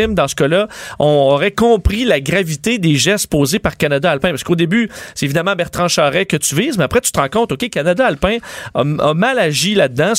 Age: 40-59